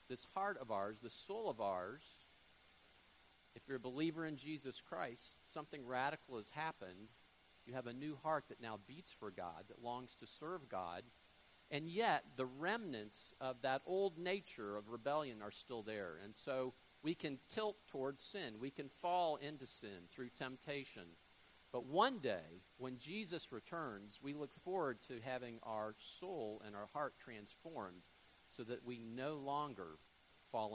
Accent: American